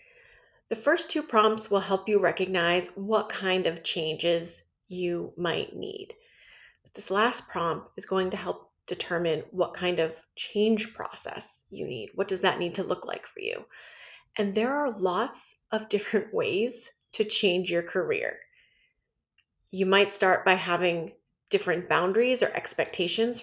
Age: 30-49